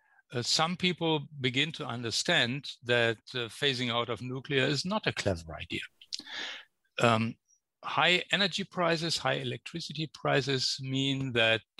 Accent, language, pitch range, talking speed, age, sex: German, English, 115-160 Hz, 130 wpm, 60-79, male